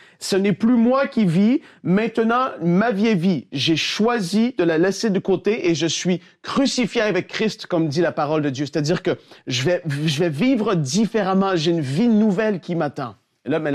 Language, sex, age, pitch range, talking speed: French, male, 40-59, 160-210 Hz, 205 wpm